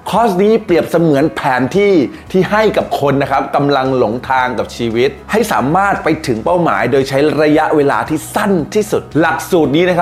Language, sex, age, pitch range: Thai, male, 20-39, 130-180 Hz